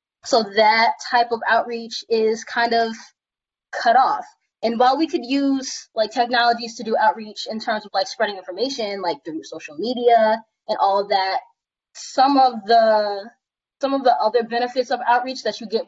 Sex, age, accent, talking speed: female, 10-29, American, 175 wpm